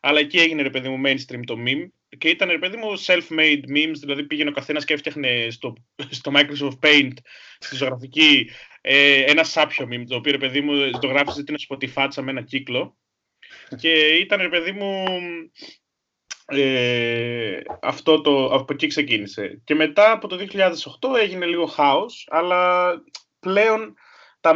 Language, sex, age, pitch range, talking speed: Greek, male, 20-39, 140-180 Hz, 155 wpm